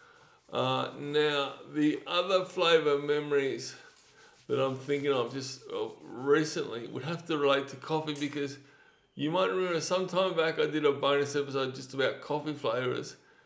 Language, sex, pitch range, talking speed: English, male, 130-165 Hz, 155 wpm